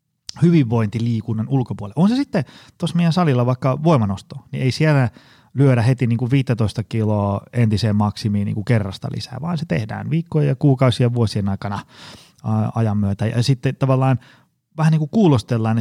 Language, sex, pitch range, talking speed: Finnish, male, 110-145 Hz, 150 wpm